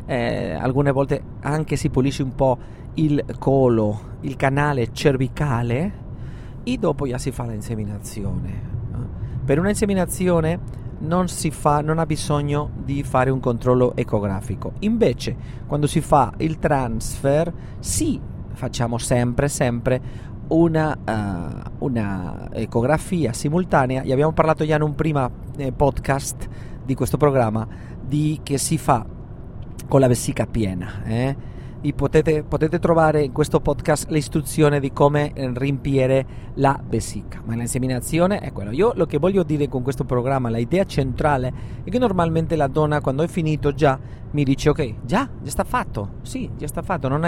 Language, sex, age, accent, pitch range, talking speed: Italian, male, 40-59, native, 120-150 Hz, 150 wpm